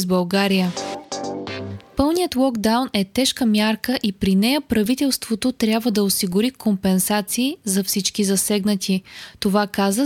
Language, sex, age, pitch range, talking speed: Bulgarian, female, 20-39, 205-255 Hz, 115 wpm